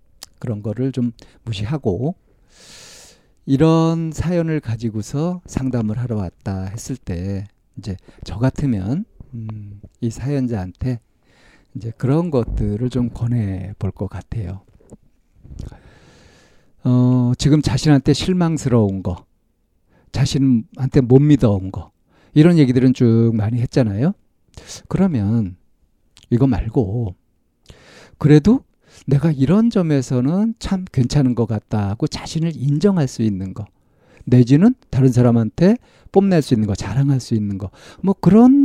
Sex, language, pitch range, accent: male, Korean, 110-150 Hz, native